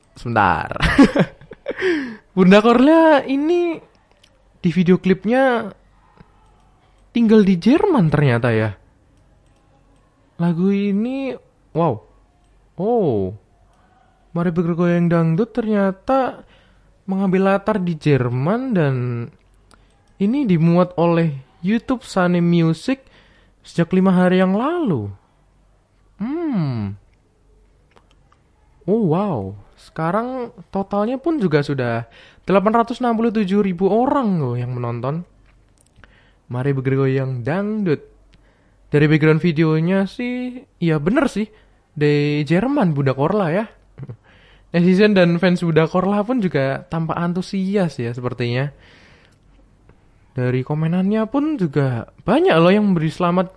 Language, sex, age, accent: Indonesian, male, 20-39, native